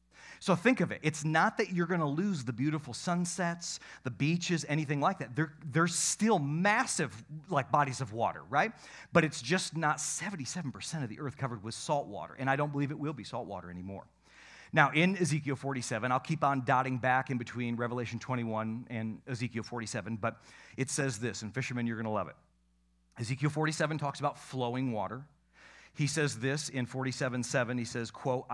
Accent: American